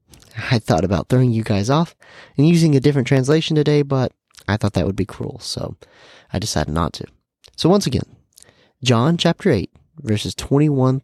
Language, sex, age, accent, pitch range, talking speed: English, male, 30-49, American, 105-145 Hz, 180 wpm